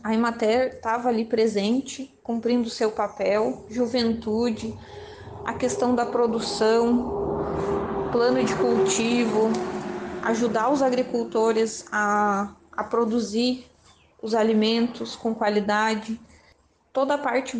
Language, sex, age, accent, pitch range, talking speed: Portuguese, female, 20-39, Brazilian, 210-235 Hz, 100 wpm